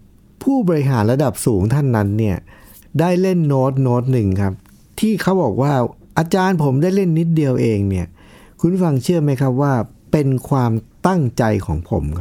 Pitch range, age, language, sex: 105-155 Hz, 60-79, Thai, male